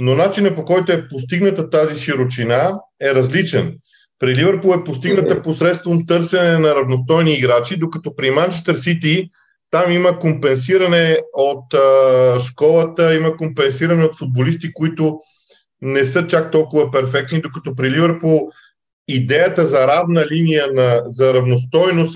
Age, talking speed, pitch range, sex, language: 40-59, 135 wpm, 135-170 Hz, male, Bulgarian